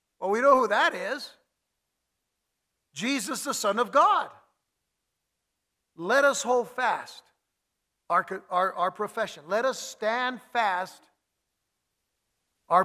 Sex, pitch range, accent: male, 190-260 Hz, American